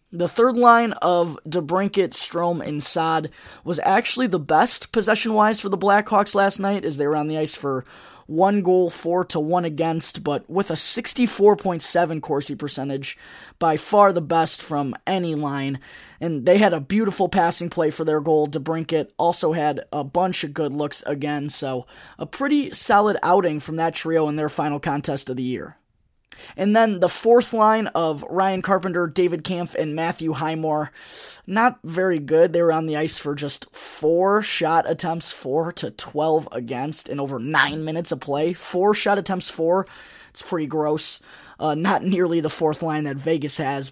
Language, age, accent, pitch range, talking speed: English, 20-39, American, 150-185 Hz, 180 wpm